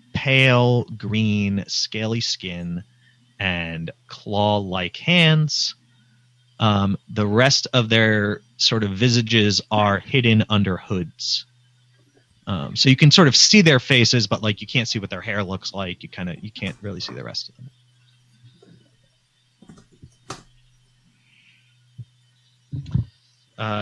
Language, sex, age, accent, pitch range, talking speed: English, male, 30-49, American, 105-130 Hz, 125 wpm